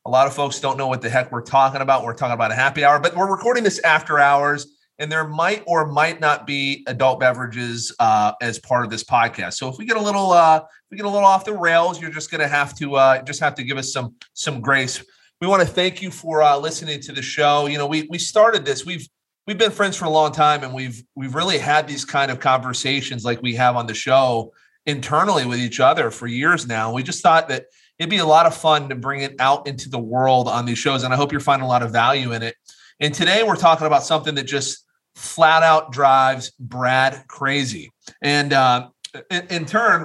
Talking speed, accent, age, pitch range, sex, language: 245 wpm, American, 30-49, 130-160 Hz, male, English